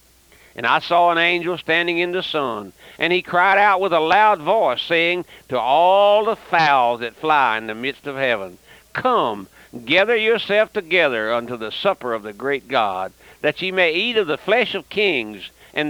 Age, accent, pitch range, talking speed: 60-79, American, 125-200 Hz, 190 wpm